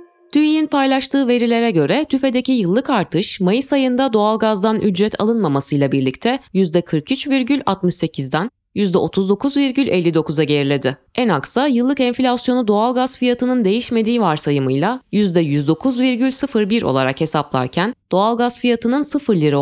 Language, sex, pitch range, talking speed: Turkish, female, 165-255 Hz, 100 wpm